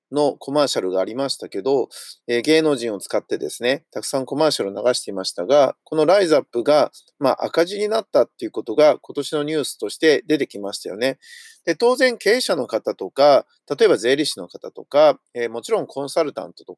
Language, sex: Japanese, male